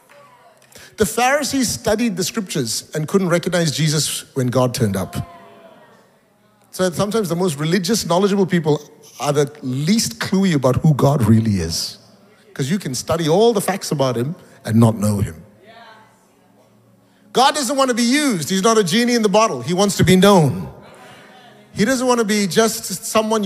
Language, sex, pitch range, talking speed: English, male, 155-225 Hz, 170 wpm